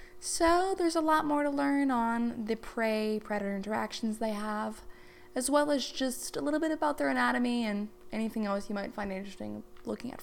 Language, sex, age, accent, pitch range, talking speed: English, female, 20-39, American, 200-280 Hz, 190 wpm